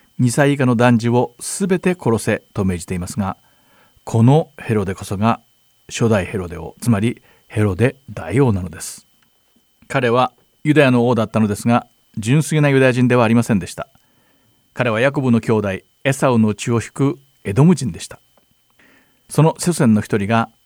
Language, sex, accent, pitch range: Japanese, male, native, 110-135 Hz